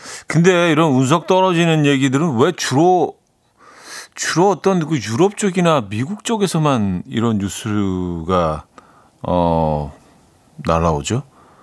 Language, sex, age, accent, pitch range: Korean, male, 40-59, native, 100-155 Hz